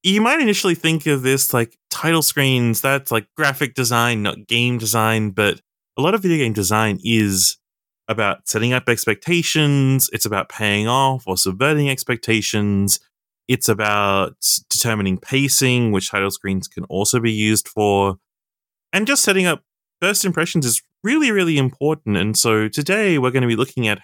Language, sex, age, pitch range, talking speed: English, male, 20-39, 105-150 Hz, 165 wpm